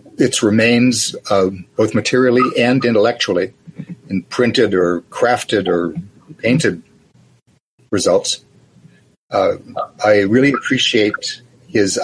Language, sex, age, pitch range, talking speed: English, male, 60-79, 105-135 Hz, 95 wpm